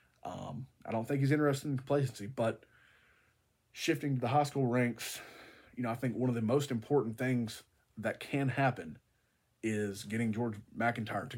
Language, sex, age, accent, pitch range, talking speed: English, male, 30-49, American, 115-135 Hz, 175 wpm